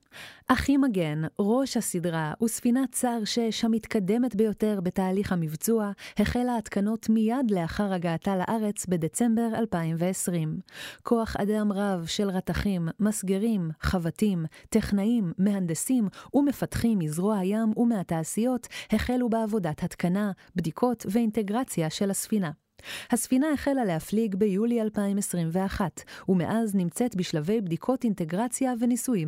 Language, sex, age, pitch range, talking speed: Hebrew, female, 30-49, 180-230 Hz, 100 wpm